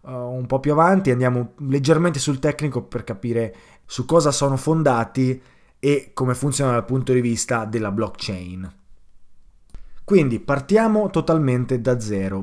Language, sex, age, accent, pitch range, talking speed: Italian, male, 20-39, native, 110-145 Hz, 135 wpm